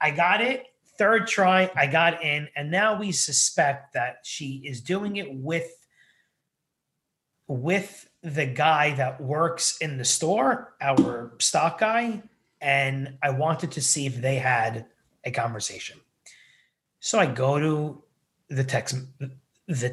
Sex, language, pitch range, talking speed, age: male, English, 130-170 Hz, 135 wpm, 30-49